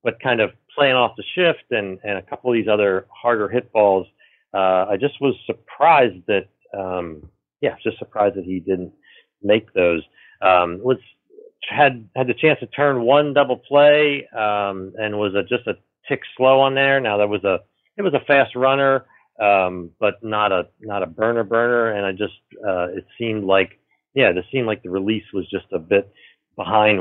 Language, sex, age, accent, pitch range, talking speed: English, male, 40-59, American, 95-125 Hz, 195 wpm